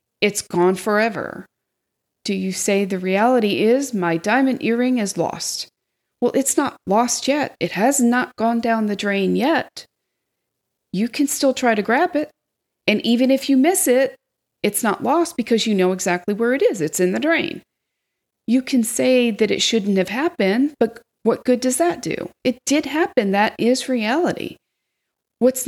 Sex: female